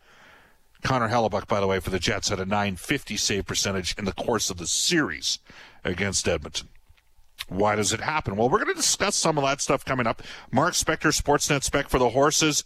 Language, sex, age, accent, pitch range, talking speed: English, male, 40-59, American, 95-140 Hz, 205 wpm